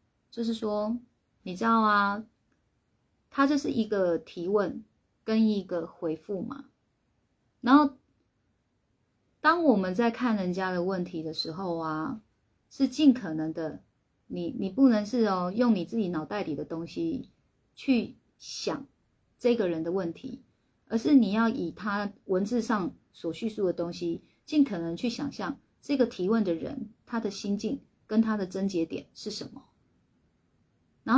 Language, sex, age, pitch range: Chinese, female, 30-49, 185-250 Hz